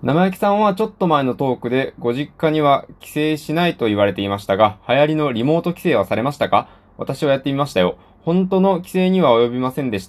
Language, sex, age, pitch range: Japanese, male, 20-39, 100-140 Hz